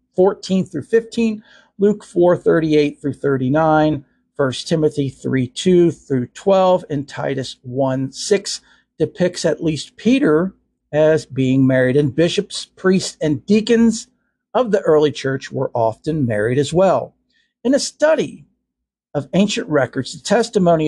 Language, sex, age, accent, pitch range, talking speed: English, male, 50-69, American, 140-205 Hz, 130 wpm